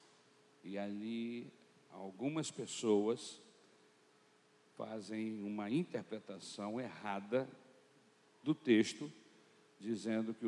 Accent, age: Brazilian, 60-79